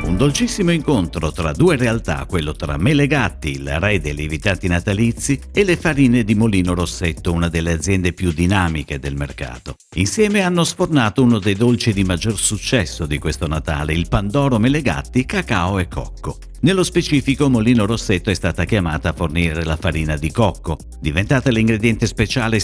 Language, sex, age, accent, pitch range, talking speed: Italian, male, 50-69, native, 80-125 Hz, 160 wpm